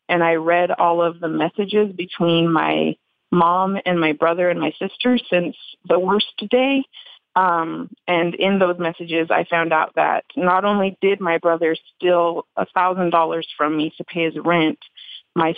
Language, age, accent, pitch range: English, 30-49, American, 165-185 Hz